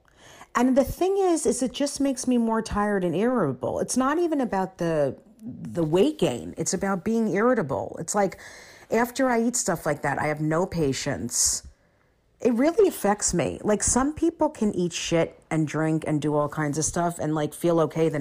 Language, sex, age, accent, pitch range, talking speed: English, female, 40-59, American, 145-205 Hz, 200 wpm